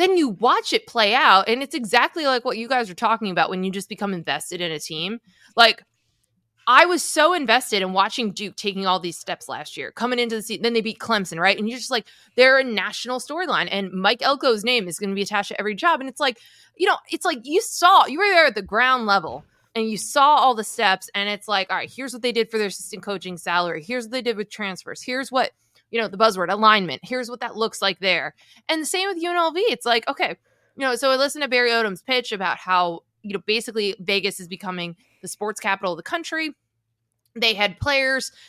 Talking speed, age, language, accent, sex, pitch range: 245 wpm, 20-39, English, American, female, 195-265 Hz